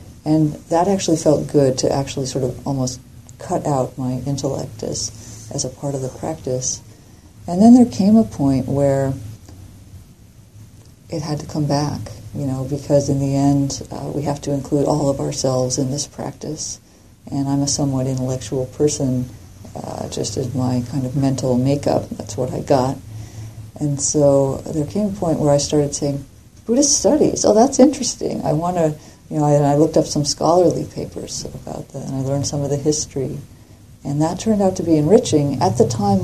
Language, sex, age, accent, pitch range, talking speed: English, female, 40-59, American, 125-145 Hz, 190 wpm